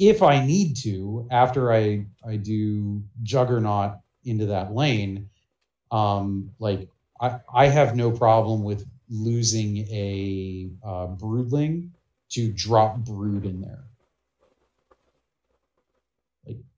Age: 30-49